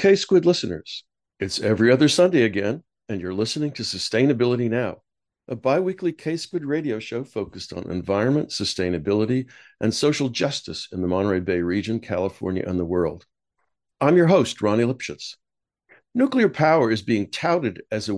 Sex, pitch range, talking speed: male, 105-145 Hz, 150 wpm